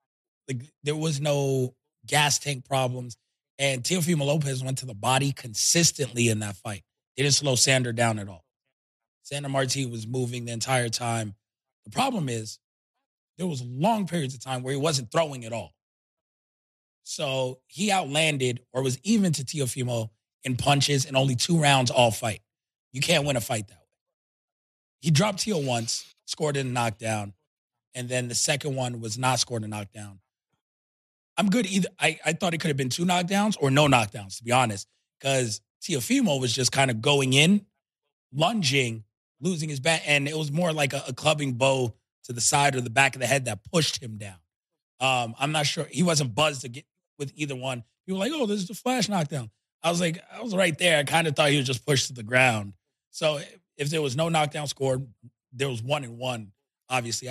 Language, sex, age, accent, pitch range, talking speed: English, male, 20-39, American, 120-155 Hz, 200 wpm